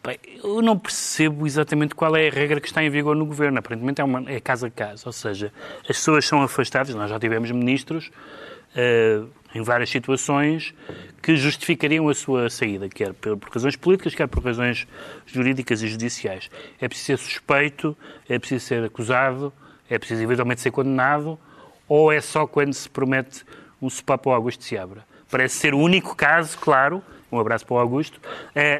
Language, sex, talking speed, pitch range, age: Portuguese, male, 185 wpm, 120-150 Hz, 30-49